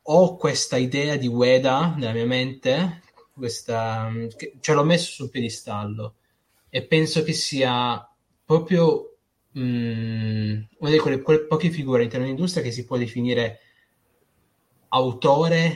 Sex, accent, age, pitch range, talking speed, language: male, native, 20-39, 110-130 Hz, 125 wpm, Italian